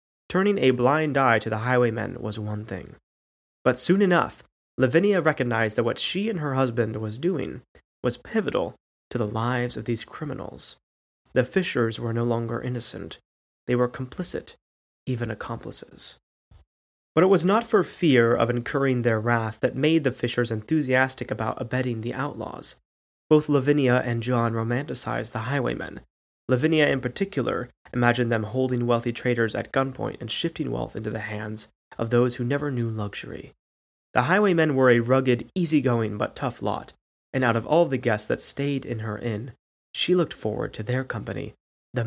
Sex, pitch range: male, 110-135 Hz